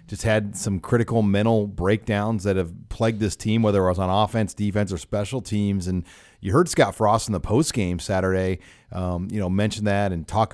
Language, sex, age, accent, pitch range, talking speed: English, male, 40-59, American, 95-115 Hz, 210 wpm